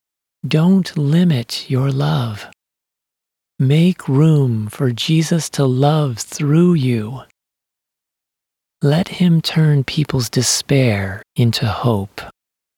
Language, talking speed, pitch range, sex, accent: English, 90 wpm, 115-155 Hz, male, American